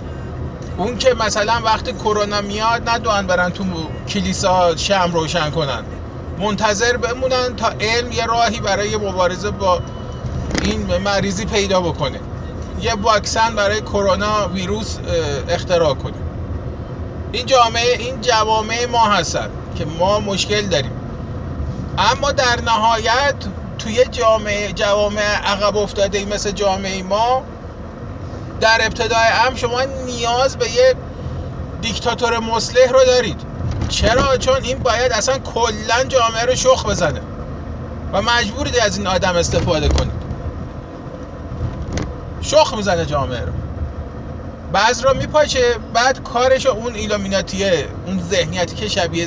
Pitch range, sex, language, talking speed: 185-245 Hz, male, Persian, 120 wpm